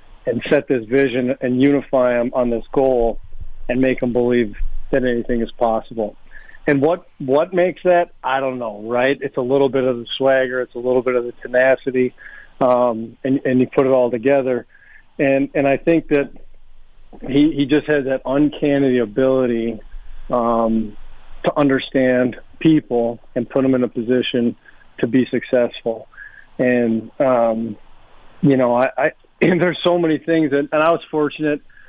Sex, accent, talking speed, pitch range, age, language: male, American, 165 wpm, 120-140 Hz, 40-59, English